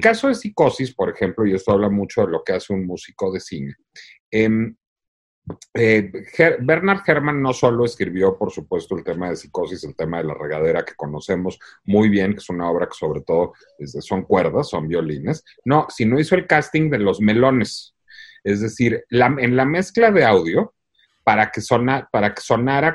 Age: 40-59